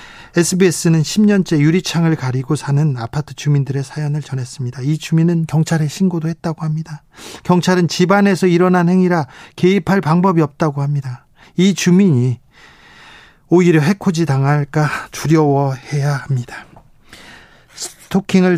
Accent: native